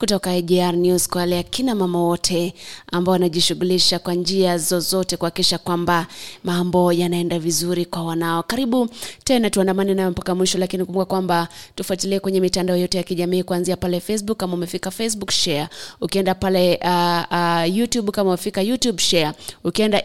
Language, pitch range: English, 180-195 Hz